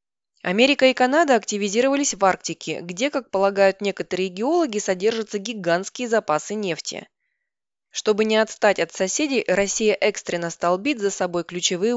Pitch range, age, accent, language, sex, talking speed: 190-240 Hz, 20-39, native, Russian, female, 130 wpm